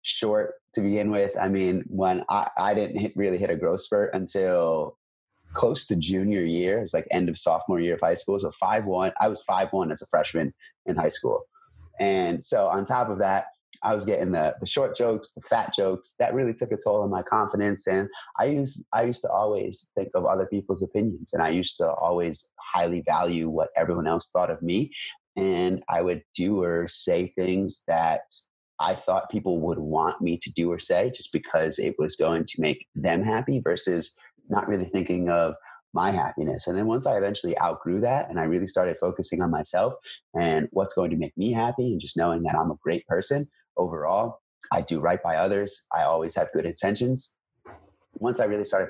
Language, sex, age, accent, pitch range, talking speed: English, male, 30-49, American, 85-125 Hz, 210 wpm